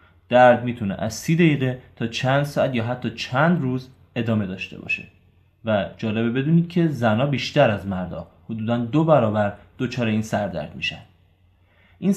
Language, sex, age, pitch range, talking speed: Persian, male, 20-39, 105-140 Hz, 155 wpm